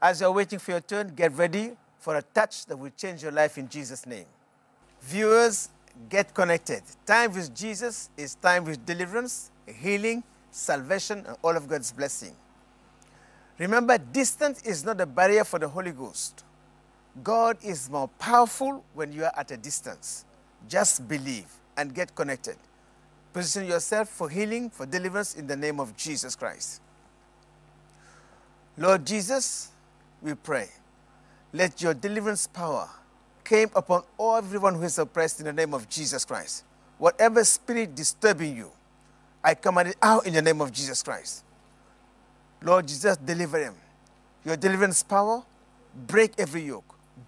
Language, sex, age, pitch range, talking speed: English, male, 50-69, 155-215 Hz, 150 wpm